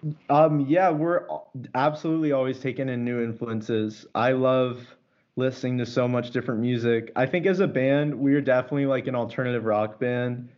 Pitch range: 110-125 Hz